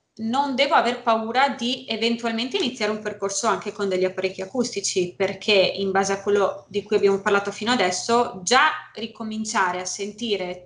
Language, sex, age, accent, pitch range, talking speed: Italian, female, 20-39, native, 190-230 Hz, 165 wpm